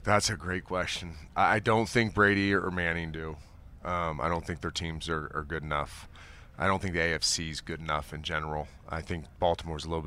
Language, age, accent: English, 30-49, American